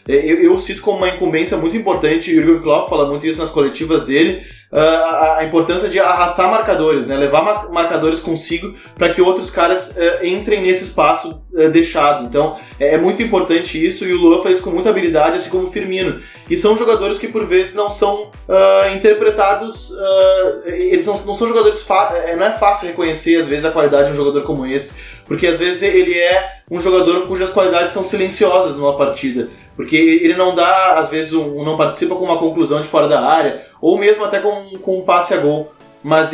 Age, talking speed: 20-39, 195 wpm